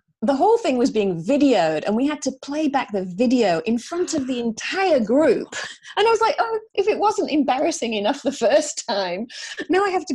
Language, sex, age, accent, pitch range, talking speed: English, female, 30-49, British, 185-275 Hz, 220 wpm